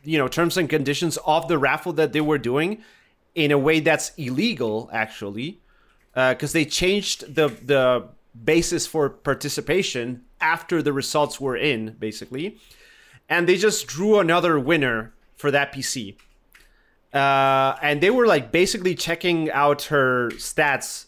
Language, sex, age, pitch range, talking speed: English, male, 30-49, 125-165 Hz, 150 wpm